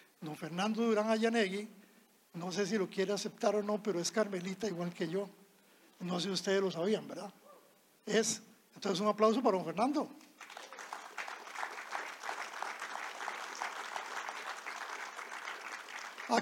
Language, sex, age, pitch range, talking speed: Spanish, male, 50-69, 185-225 Hz, 120 wpm